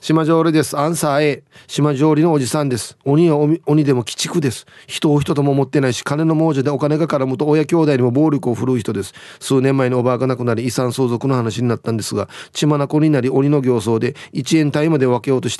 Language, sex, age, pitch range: Japanese, male, 30-49, 125-160 Hz